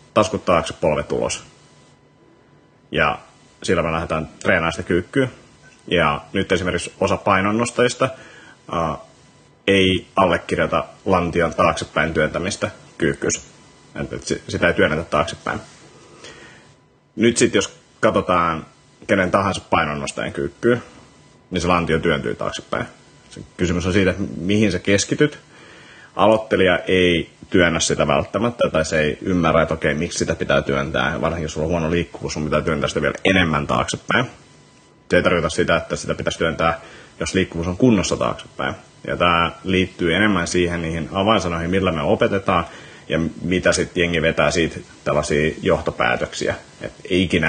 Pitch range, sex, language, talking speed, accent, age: 80-95 Hz, male, Finnish, 135 wpm, native, 30-49